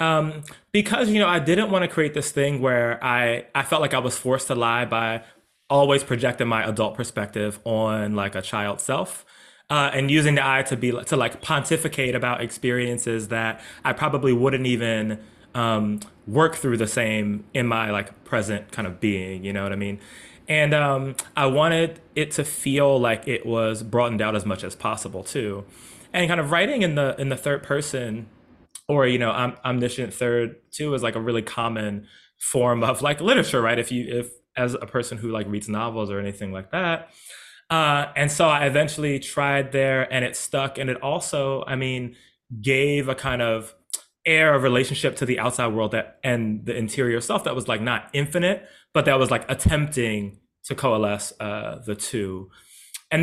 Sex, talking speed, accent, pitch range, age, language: male, 190 wpm, American, 110-145 Hz, 20-39, English